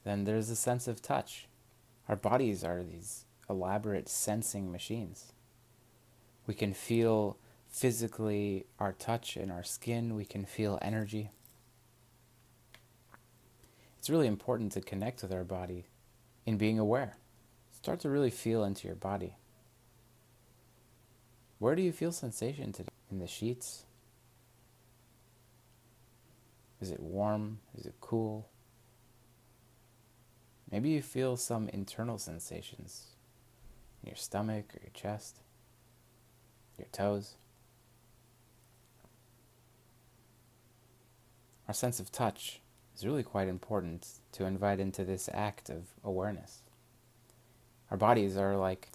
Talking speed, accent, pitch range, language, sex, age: 115 wpm, American, 105-120 Hz, English, male, 30-49